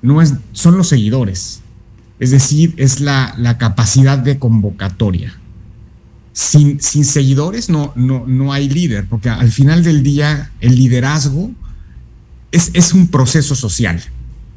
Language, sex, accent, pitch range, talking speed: Spanish, male, Mexican, 110-135 Hz, 135 wpm